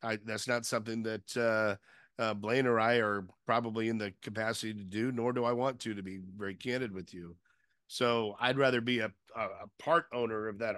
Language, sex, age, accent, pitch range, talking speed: English, male, 50-69, American, 105-120 Hz, 210 wpm